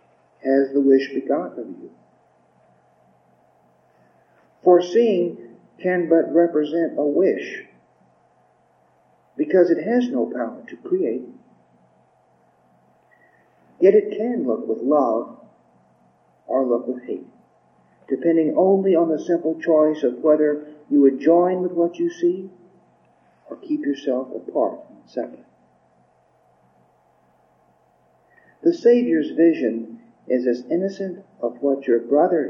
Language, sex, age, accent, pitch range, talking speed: English, male, 50-69, American, 130-185 Hz, 110 wpm